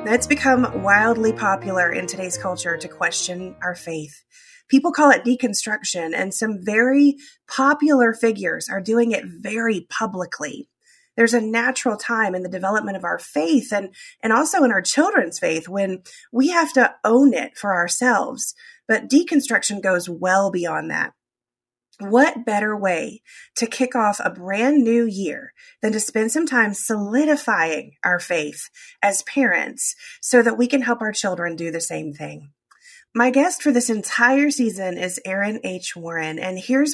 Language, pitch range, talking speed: English, 185-255 Hz, 160 wpm